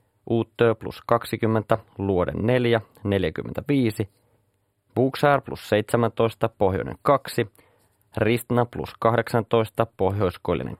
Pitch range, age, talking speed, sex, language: 100-115 Hz, 30-49, 85 wpm, male, Finnish